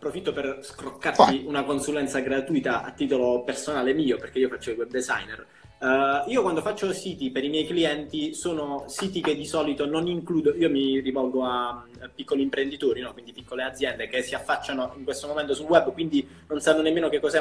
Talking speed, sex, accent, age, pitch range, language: 195 wpm, male, native, 20-39, 130-165 Hz, Italian